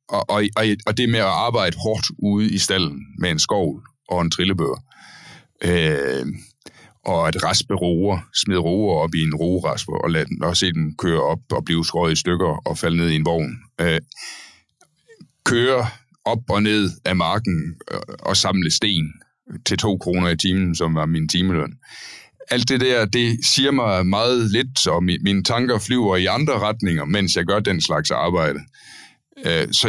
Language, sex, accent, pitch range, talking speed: Danish, male, native, 85-110 Hz, 175 wpm